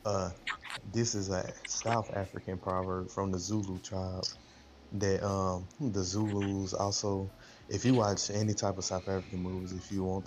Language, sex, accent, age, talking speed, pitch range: English, male, American, 20-39, 165 wpm, 95-100 Hz